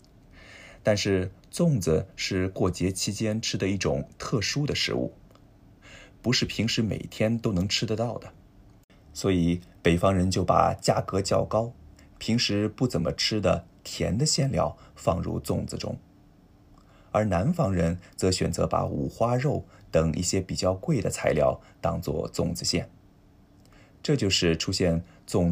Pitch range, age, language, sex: 90-110 Hz, 20-39, Japanese, male